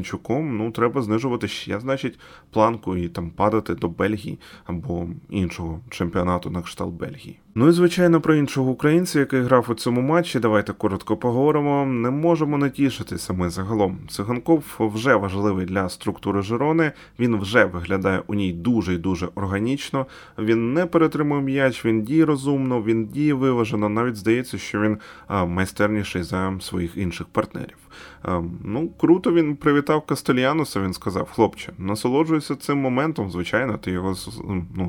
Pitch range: 95-130 Hz